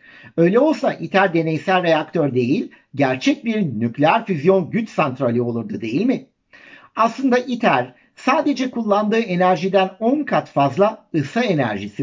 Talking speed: 125 wpm